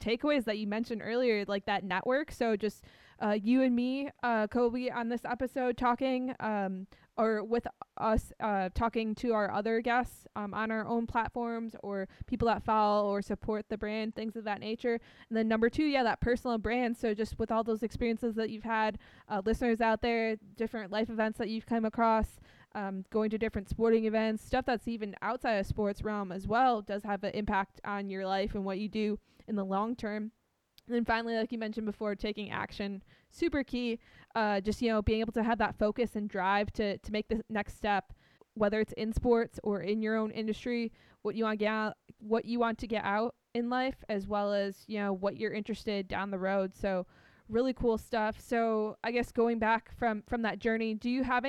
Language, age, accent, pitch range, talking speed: English, 20-39, American, 210-235 Hz, 215 wpm